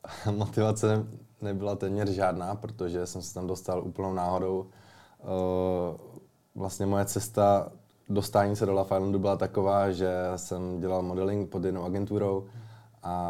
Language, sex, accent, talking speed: Czech, male, native, 125 wpm